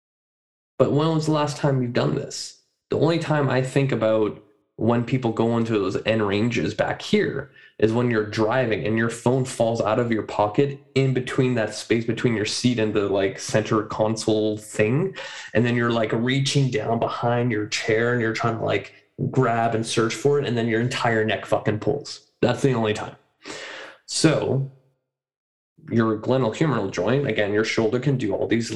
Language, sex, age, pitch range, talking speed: English, male, 20-39, 110-130 Hz, 190 wpm